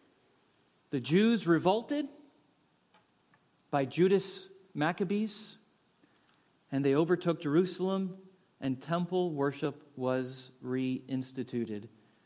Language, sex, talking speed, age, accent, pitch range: English, male, 75 wpm, 40-59, American, 130-190 Hz